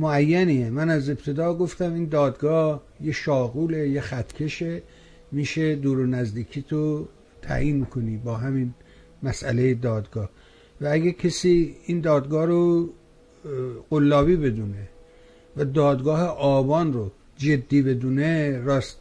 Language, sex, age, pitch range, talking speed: Persian, male, 60-79, 130-170 Hz, 115 wpm